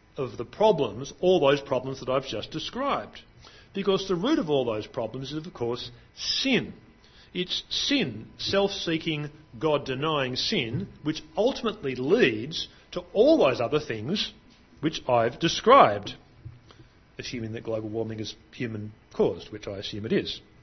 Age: 40-59